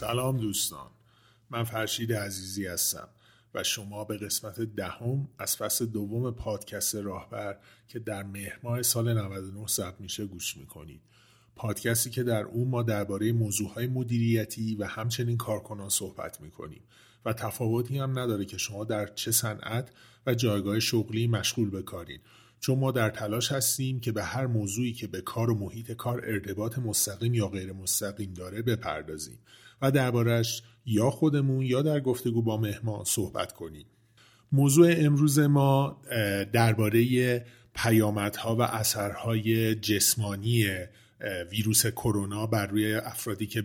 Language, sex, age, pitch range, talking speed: Persian, male, 30-49, 100-120 Hz, 140 wpm